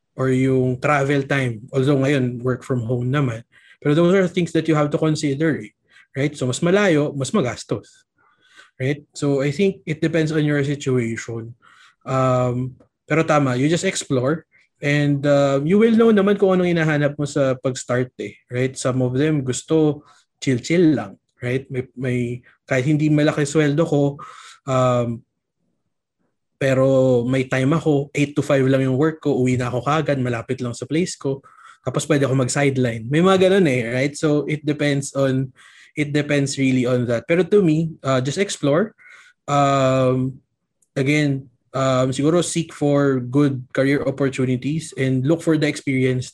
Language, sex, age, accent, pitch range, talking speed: English, male, 20-39, Filipino, 130-155 Hz, 165 wpm